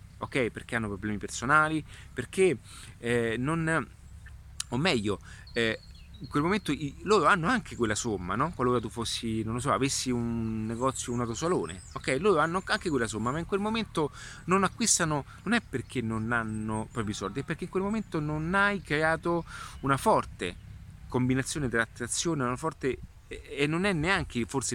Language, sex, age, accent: Italian, male, 30-49, native